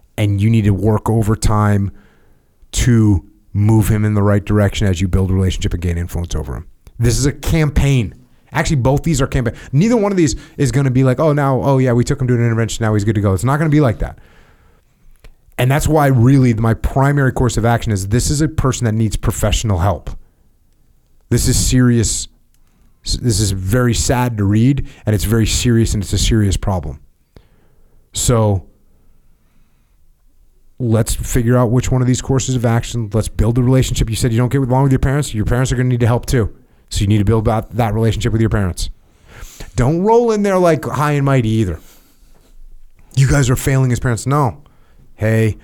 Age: 30-49